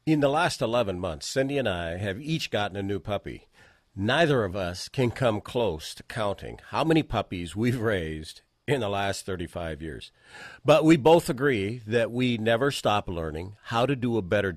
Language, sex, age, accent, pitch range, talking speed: English, male, 50-69, American, 95-125 Hz, 190 wpm